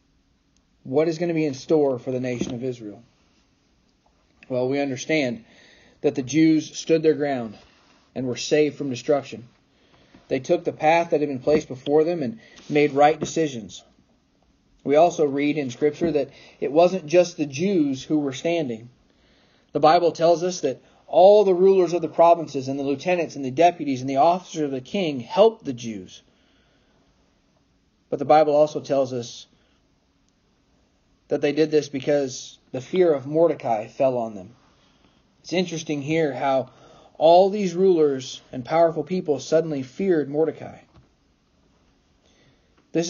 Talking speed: 155 wpm